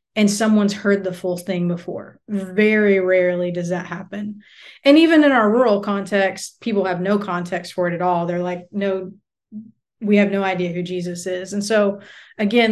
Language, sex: English, female